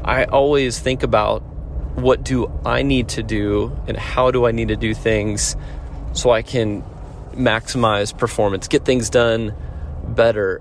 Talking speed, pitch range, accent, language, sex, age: 155 wpm, 100-125 Hz, American, English, male, 30-49